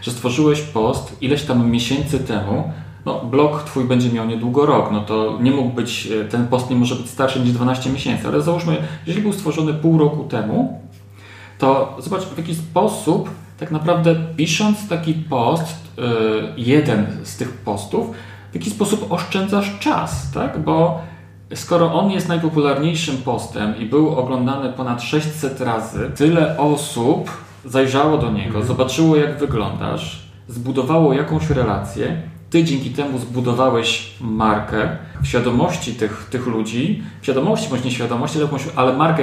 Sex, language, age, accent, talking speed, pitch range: male, Polish, 40-59, native, 145 wpm, 115-155 Hz